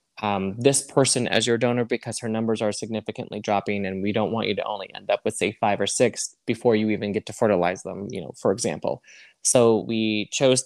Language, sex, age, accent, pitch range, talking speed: English, male, 20-39, American, 110-125 Hz, 225 wpm